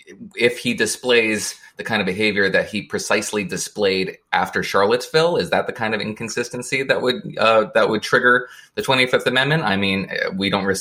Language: English